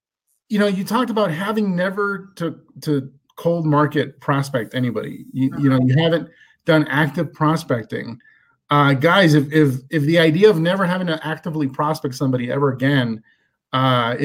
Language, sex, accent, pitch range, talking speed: English, male, American, 135-170 Hz, 160 wpm